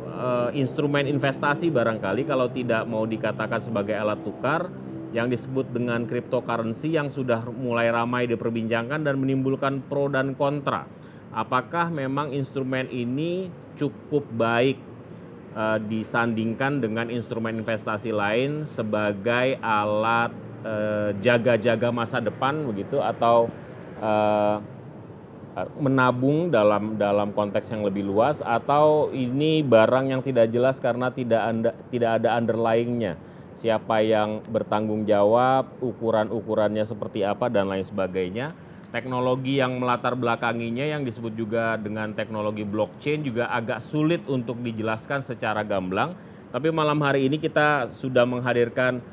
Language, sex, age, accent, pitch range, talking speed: Indonesian, male, 30-49, native, 110-135 Hz, 120 wpm